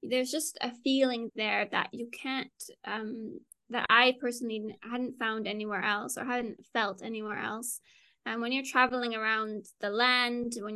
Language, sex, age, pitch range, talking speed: Arabic, female, 10-29, 225-260 Hz, 165 wpm